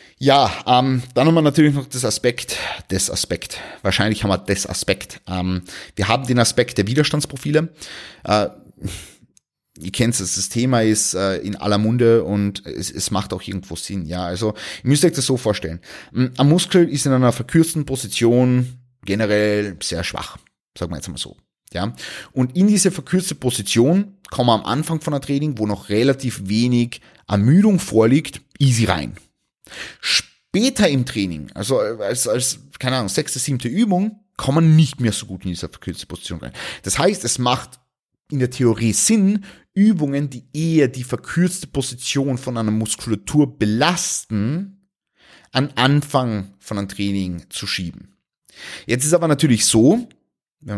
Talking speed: 165 wpm